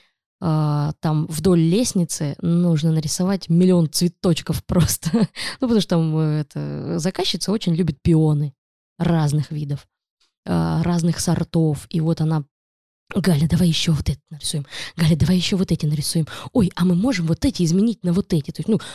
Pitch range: 155-185 Hz